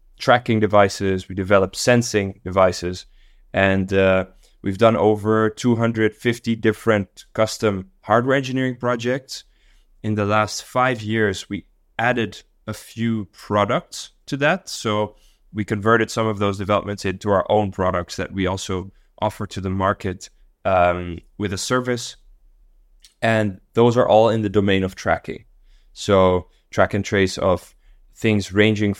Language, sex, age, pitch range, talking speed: English, male, 20-39, 95-110 Hz, 140 wpm